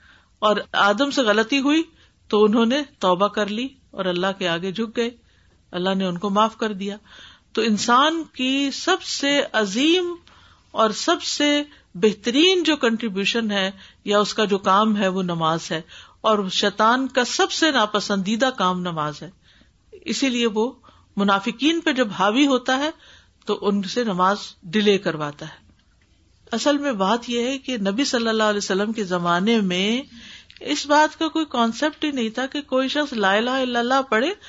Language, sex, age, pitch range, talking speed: Urdu, female, 50-69, 200-285 Hz, 175 wpm